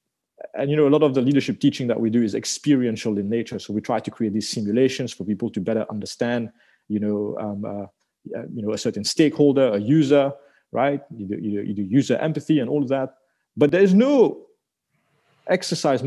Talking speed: 205 wpm